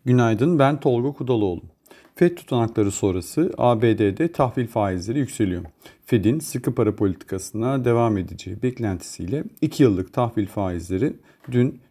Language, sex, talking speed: Turkish, male, 115 wpm